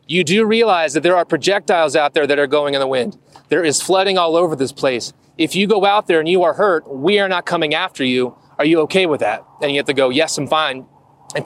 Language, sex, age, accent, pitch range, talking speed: English, male, 30-49, American, 145-180 Hz, 265 wpm